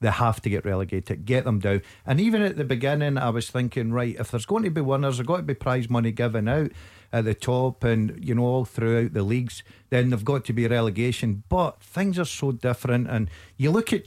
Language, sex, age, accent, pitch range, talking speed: English, male, 50-69, British, 110-140 Hz, 245 wpm